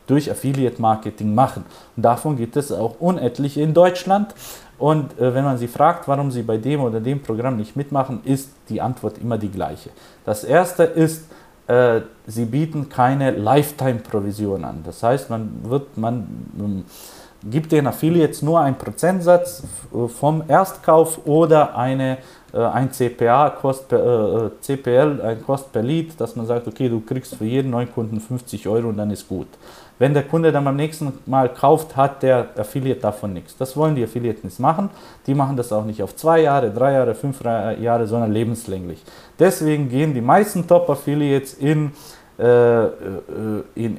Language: German